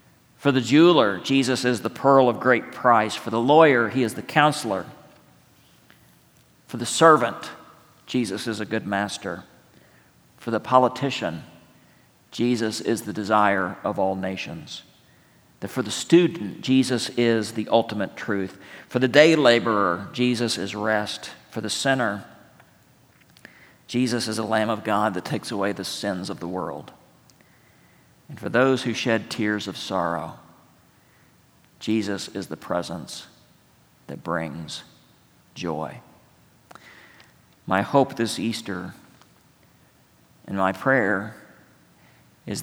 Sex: male